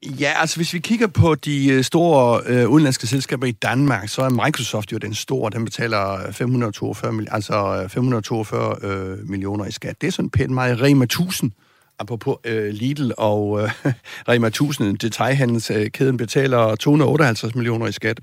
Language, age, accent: Danish, 60-79, native